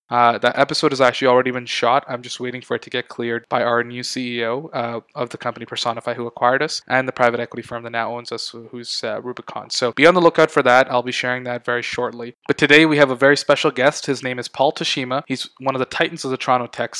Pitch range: 120-130 Hz